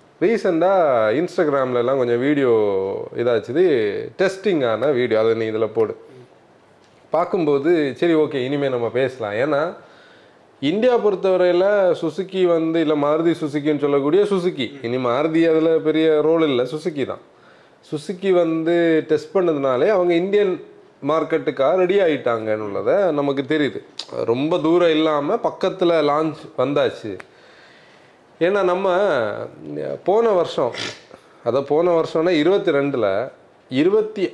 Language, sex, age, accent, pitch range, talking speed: Tamil, male, 30-49, native, 150-210 Hz, 110 wpm